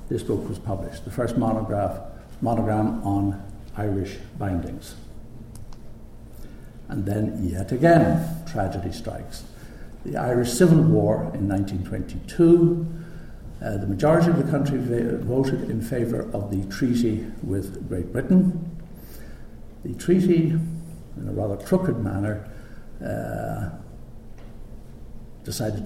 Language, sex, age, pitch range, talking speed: English, male, 60-79, 100-125 Hz, 110 wpm